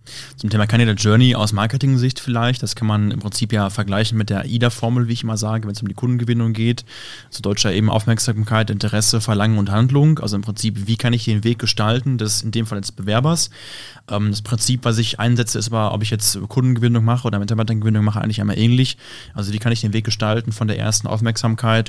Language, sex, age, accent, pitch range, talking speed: German, male, 30-49, German, 105-120 Hz, 215 wpm